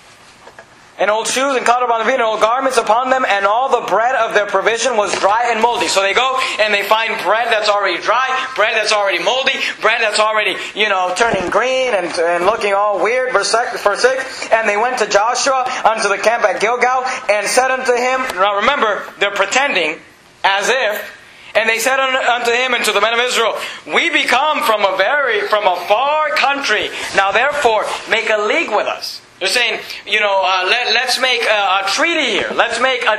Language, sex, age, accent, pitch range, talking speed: English, male, 30-49, American, 200-255 Hz, 210 wpm